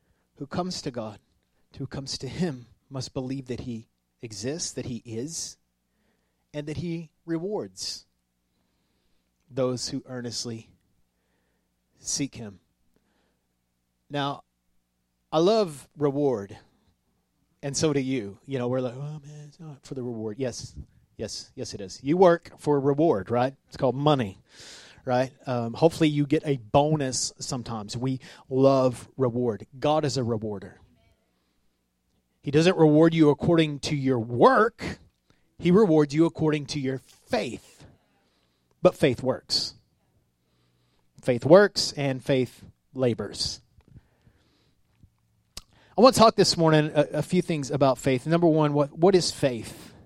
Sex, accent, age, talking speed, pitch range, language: male, American, 30-49, 135 wpm, 105-150 Hz, English